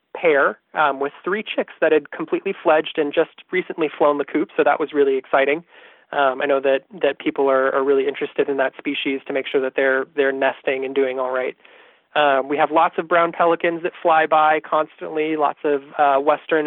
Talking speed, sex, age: 210 wpm, male, 20-39